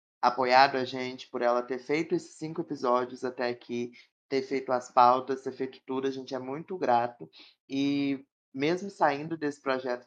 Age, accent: 20-39, Brazilian